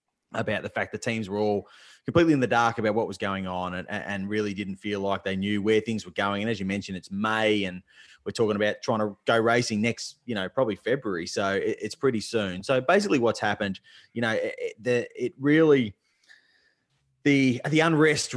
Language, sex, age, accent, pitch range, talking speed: English, male, 20-39, Australian, 100-125 Hz, 205 wpm